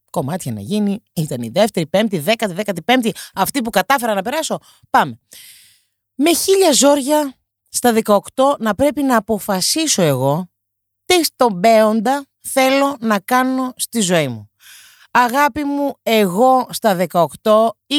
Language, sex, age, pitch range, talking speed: Greek, female, 30-49, 175-260 Hz, 145 wpm